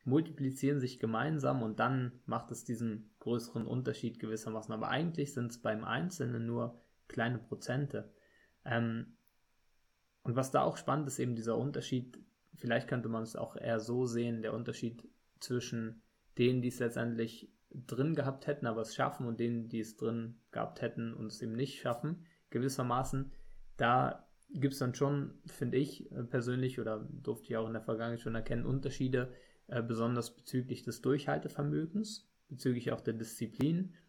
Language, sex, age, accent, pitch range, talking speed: German, male, 20-39, German, 115-135 Hz, 160 wpm